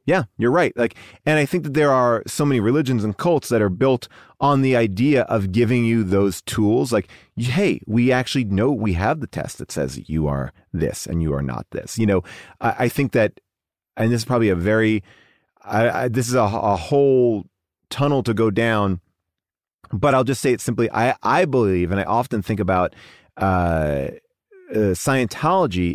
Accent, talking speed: American, 195 wpm